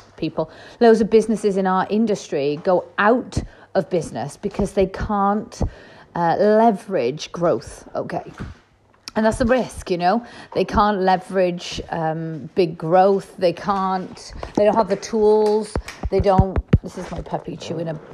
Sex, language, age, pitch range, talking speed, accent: female, English, 40-59, 190-275 Hz, 150 wpm, British